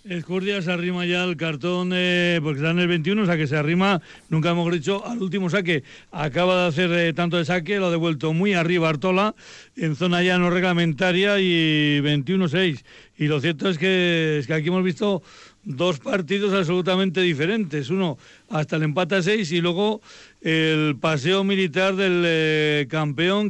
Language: Spanish